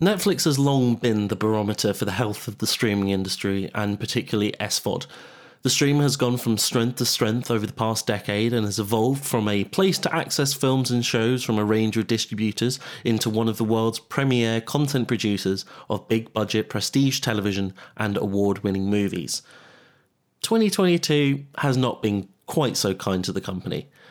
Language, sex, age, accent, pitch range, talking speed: English, male, 30-49, British, 105-130 Hz, 170 wpm